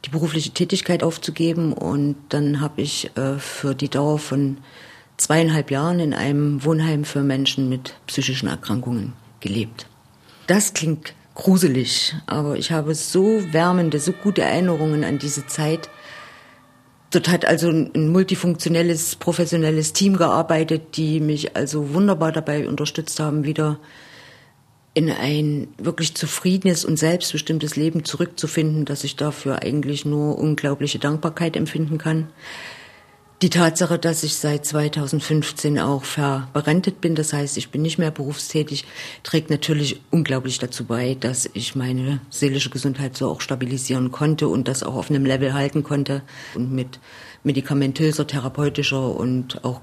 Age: 50-69